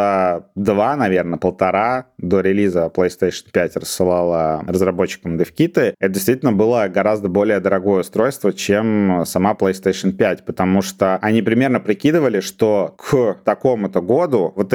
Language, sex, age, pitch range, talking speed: Russian, male, 30-49, 95-110 Hz, 125 wpm